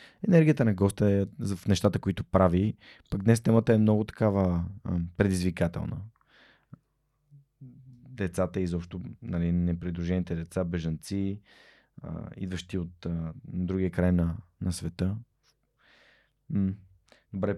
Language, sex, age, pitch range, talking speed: Bulgarian, male, 30-49, 90-110 Hz, 100 wpm